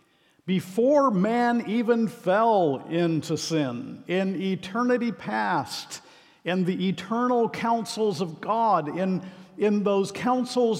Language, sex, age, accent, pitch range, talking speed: English, male, 50-69, American, 150-190 Hz, 105 wpm